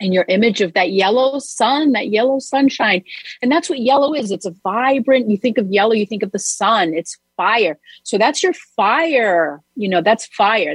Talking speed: 205 wpm